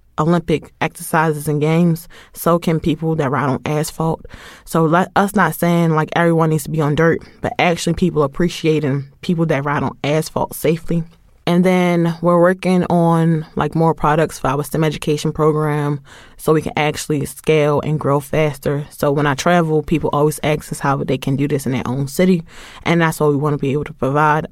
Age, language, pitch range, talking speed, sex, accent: 20-39, English, 145-165 Hz, 195 wpm, female, American